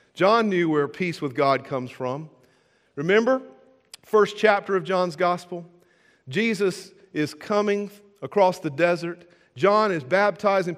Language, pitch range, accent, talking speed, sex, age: English, 140-195 Hz, American, 130 wpm, male, 40-59